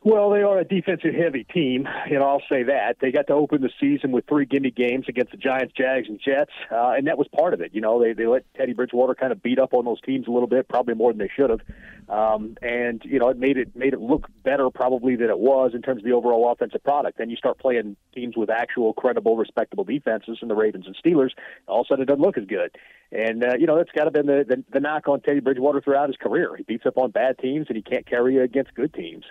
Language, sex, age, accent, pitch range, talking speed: English, male, 40-59, American, 120-140 Hz, 275 wpm